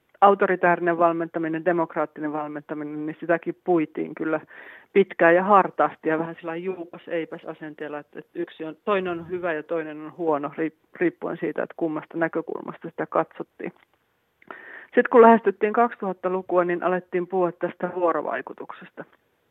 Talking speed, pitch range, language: 130 wpm, 155-185 Hz, Finnish